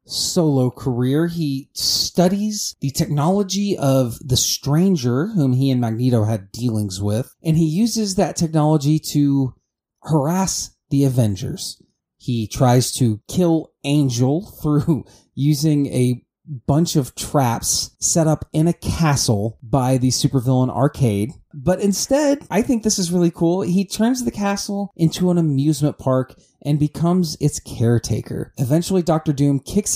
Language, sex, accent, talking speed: English, male, American, 140 wpm